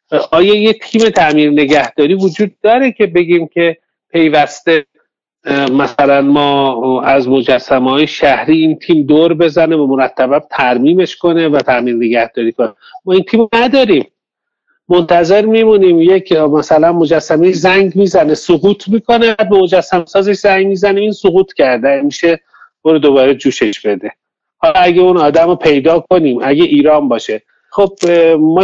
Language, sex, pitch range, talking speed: English, male, 145-200 Hz, 135 wpm